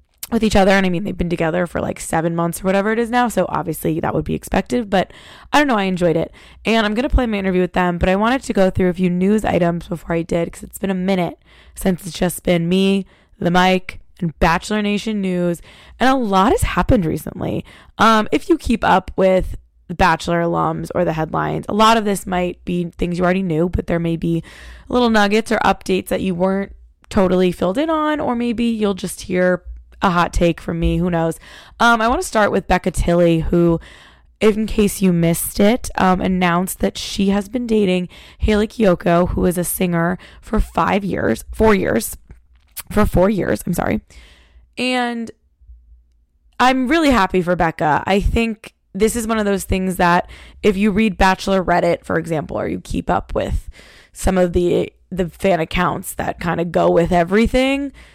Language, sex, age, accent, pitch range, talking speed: English, female, 20-39, American, 170-215 Hz, 205 wpm